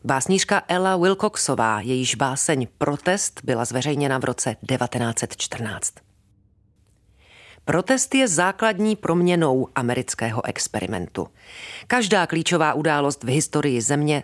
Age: 40-59